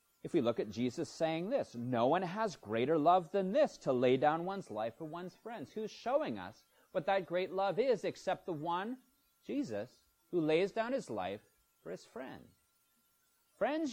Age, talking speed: 30-49, 185 wpm